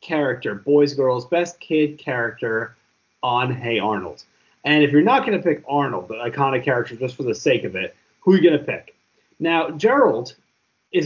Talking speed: 190 wpm